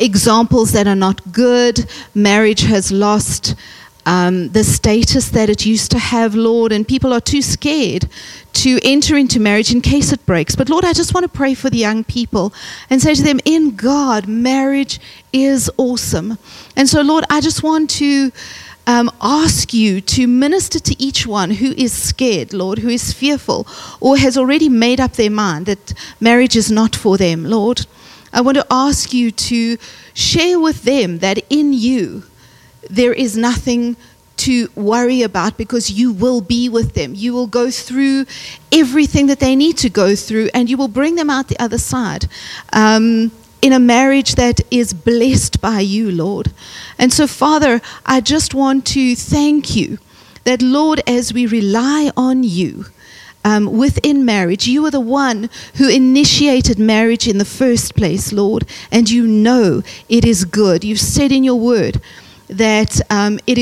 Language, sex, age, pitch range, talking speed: English, female, 40-59, 215-270 Hz, 175 wpm